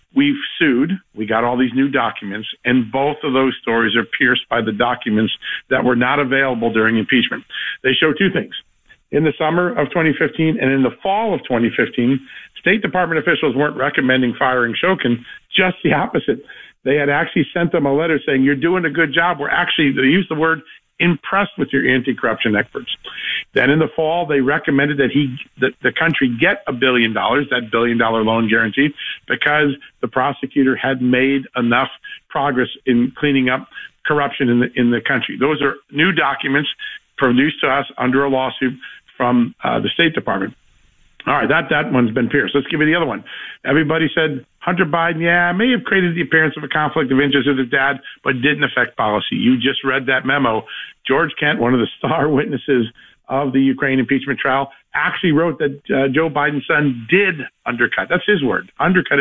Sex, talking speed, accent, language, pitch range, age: male, 190 wpm, American, English, 125-160 Hz, 50-69